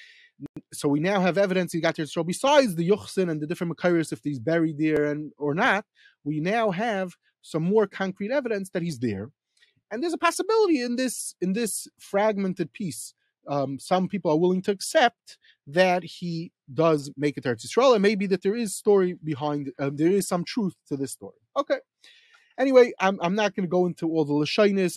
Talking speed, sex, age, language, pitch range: 205 wpm, male, 30-49, English, 150-205 Hz